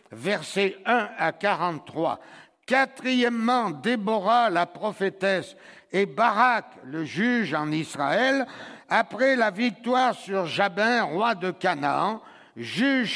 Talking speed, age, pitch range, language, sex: 105 wpm, 60-79, 185-245 Hz, French, male